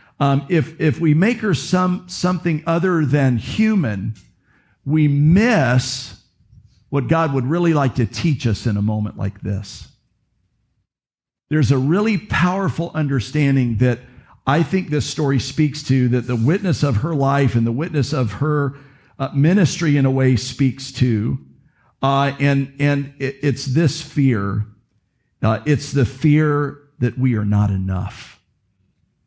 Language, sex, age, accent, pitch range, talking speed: English, male, 50-69, American, 120-150 Hz, 150 wpm